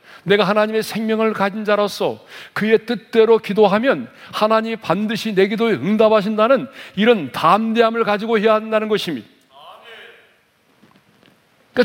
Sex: male